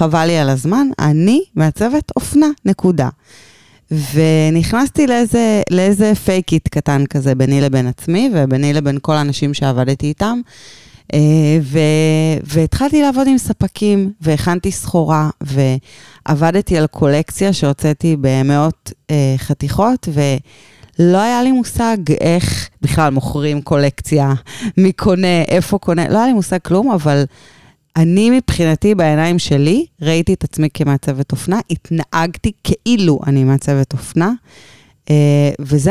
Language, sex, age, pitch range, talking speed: Hebrew, female, 20-39, 145-190 Hz, 115 wpm